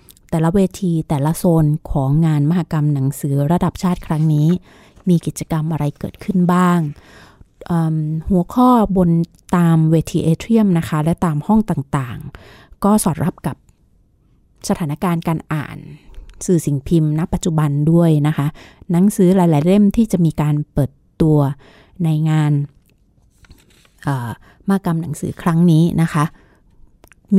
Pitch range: 150-180 Hz